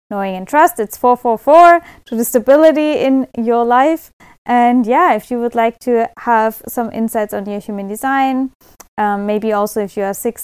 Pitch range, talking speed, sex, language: 195-240 Hz, 195 wpm, female, English